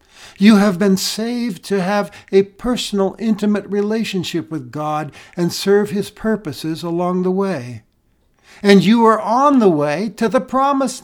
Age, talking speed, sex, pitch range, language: 60-79, 150 wpm, male, 150-205 Hz, English